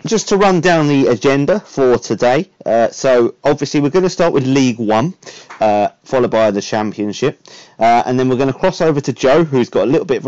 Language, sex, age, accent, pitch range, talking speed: English, male, 30-49, British, 110-135 Hz, 230 wpm